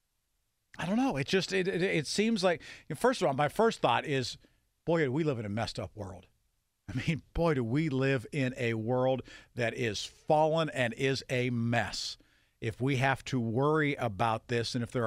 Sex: male